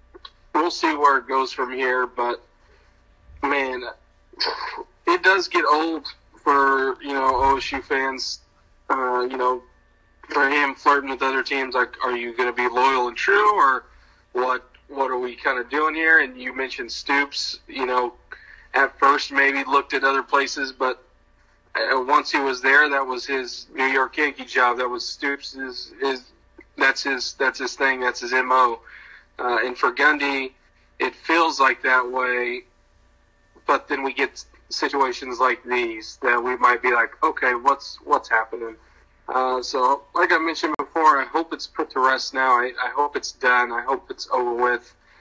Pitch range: 125-140 Hz